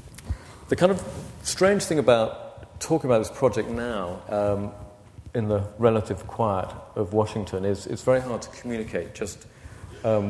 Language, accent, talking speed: English, British, 150 wpm